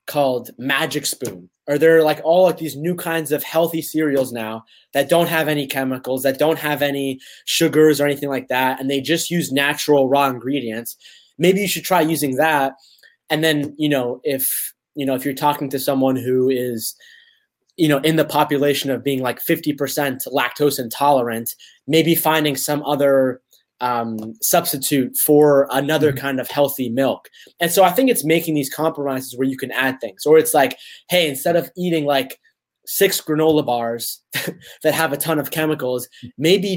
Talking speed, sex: 180 wpm, male